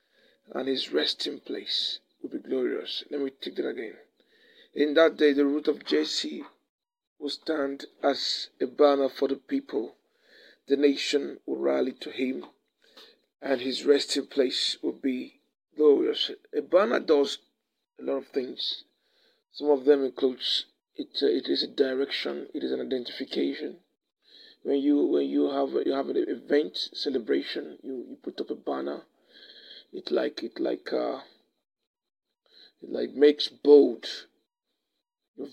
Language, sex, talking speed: English, male, 145 wpm